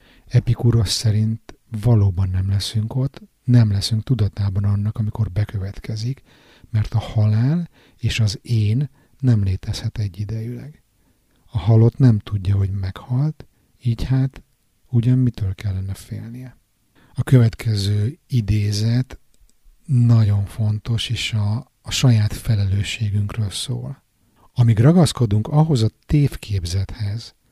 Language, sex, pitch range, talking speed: Hungarian, male, 105-125 Hz, 105 wpm